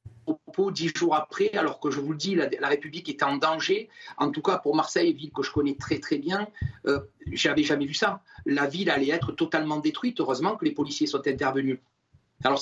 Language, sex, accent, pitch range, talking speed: French, male, French, 150-215 Hz, 220 wpm